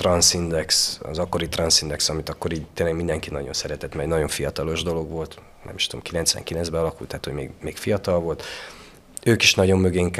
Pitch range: 80-95 Hz